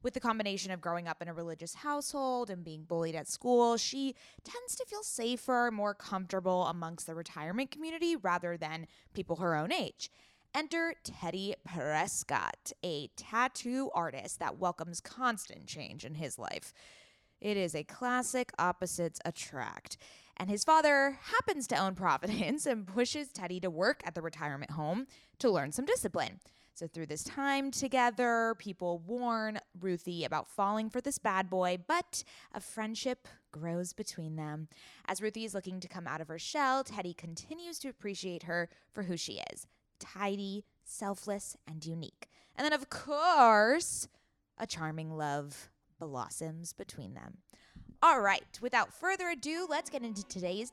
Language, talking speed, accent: English, 155 wpm, American